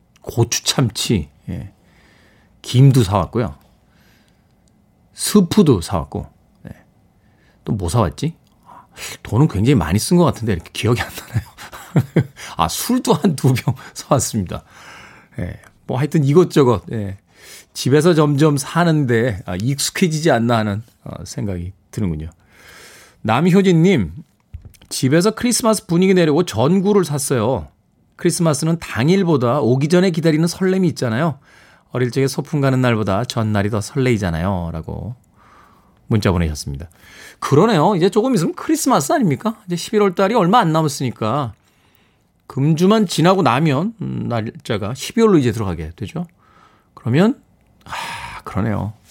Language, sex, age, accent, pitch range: Korean, male, 40-59, native, 110-180 Hz